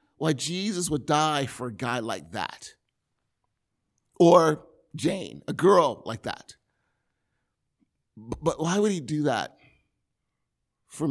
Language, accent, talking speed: English, American, 120 wpm